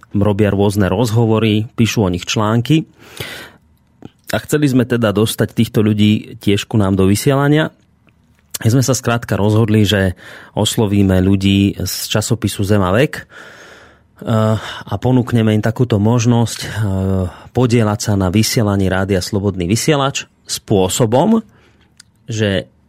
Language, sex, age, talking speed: Slovak, male, 30-49, 120 wpm